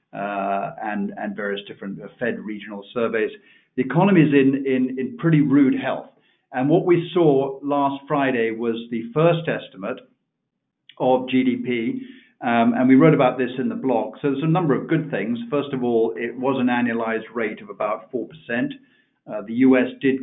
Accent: British